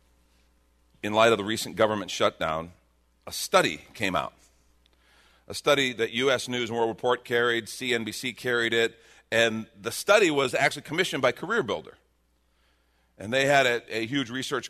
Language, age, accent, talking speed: English, 40-59, American, 160 wpm